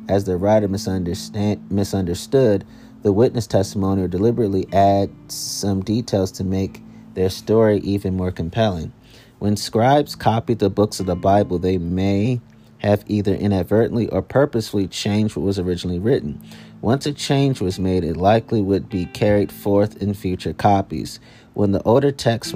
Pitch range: 95-110 Hz